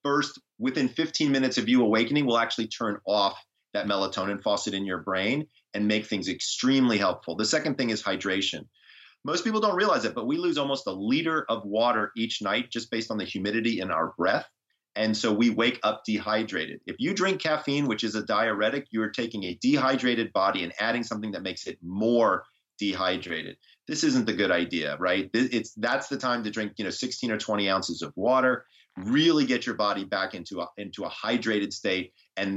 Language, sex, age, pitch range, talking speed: English, male, 30-49, 105-135 Hz, 200 wpm